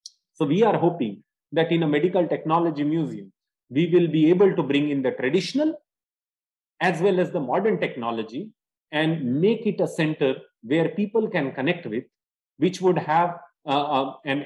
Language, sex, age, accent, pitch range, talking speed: English, male, 30-49, Indian, 145-185 Hz, 170 wpm